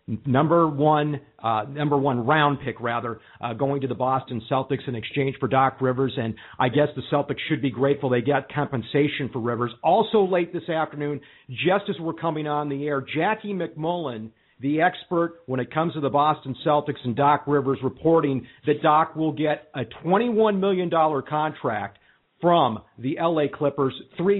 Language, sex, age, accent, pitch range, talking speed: English, male, 50-69, American, 130-160 Hz, 175 wpm